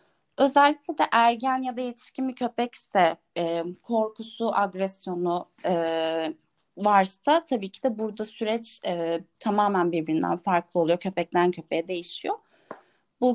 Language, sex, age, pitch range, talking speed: Turkish, female, 30-49, 180-245 Hz, 110 wpm